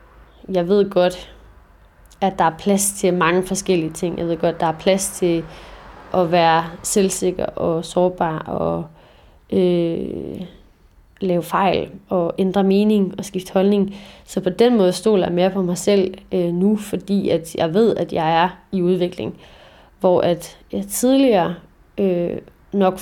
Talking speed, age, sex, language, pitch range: 145 wpm, 30-49, female, Danish, 170-200 Hz